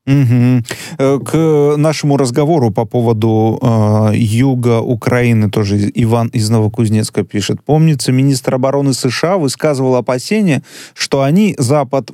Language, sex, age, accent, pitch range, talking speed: Russian, male, 30-49, native, 120-155 Hz, 115 wpm